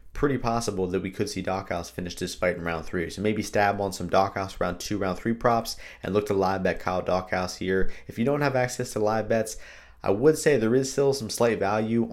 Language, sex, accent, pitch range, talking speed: English, male, American, 95-115 Hz, 245 wpm